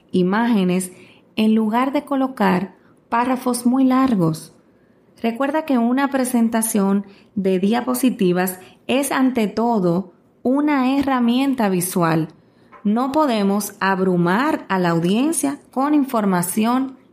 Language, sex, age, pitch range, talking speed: Spanish, female, 30-49, 185-255 Hz, 100 wpm